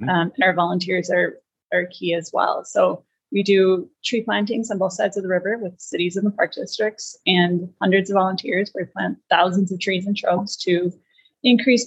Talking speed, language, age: 200 wpm, English, 30-49